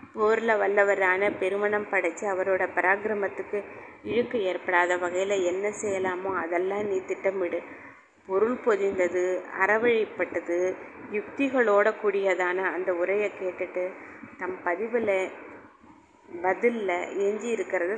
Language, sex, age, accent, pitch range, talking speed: Tamil, female, 20-39, native, 180-215 Hz, 90 wpm